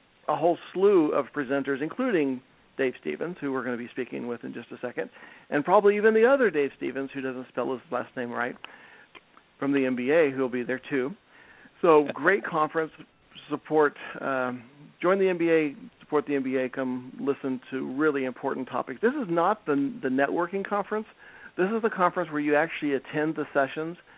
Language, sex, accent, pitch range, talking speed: English, male, American, 135-160 Hz, 185 wpm